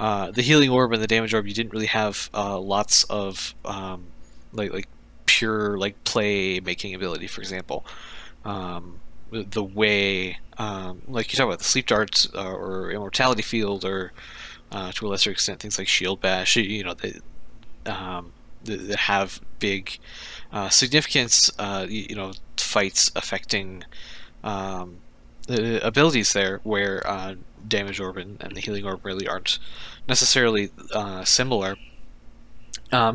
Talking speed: 145 wpm